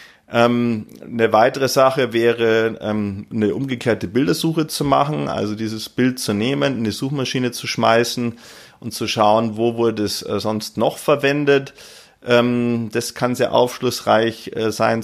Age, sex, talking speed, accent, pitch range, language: 30-49, male, 130 wpm, German, 110-135 Hz, German